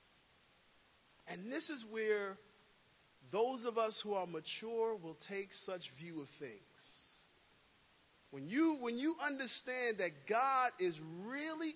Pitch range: 205-315 Hz